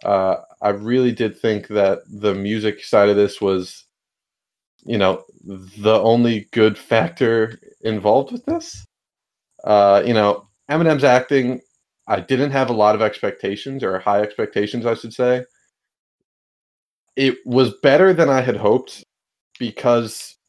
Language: English